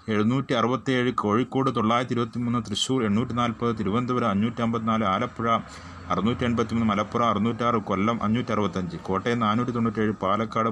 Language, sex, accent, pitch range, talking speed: Malayalam, male, native, 110-130 Hz, 95 wpm